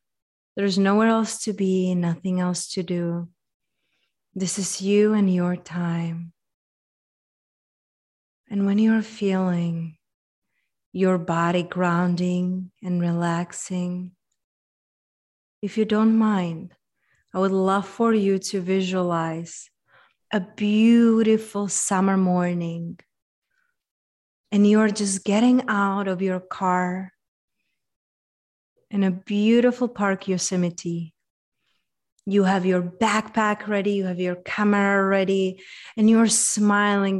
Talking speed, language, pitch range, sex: 105 wpm, English, 180-210 Hz, female